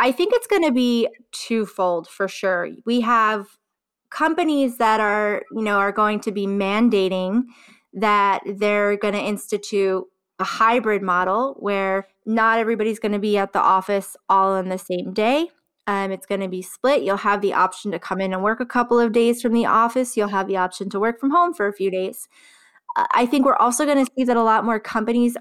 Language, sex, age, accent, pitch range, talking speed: English, female, 20-39, American, 195-240 Hz, 210 wpm